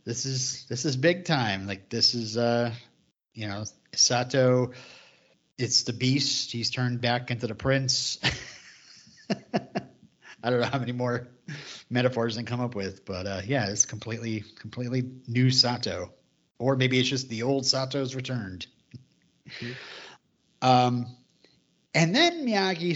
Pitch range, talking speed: 115-145 Hz, 140 wpm